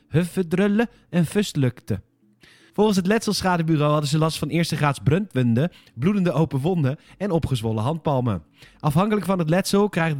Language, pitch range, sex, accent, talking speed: Dutch, 130-175 Hz, male, Dutch, 135 wpm